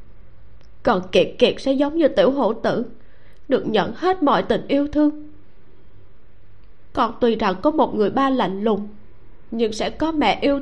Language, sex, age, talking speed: Vietnamese, female, 20-39, 170 wpm